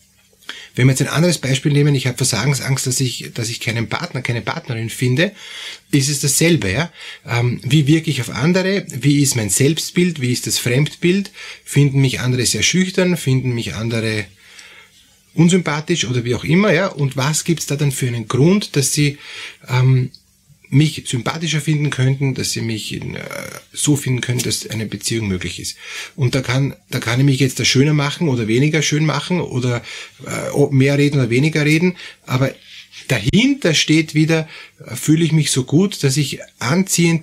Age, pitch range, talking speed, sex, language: 30-49, 125-155 Hz, 180 wpm, male, German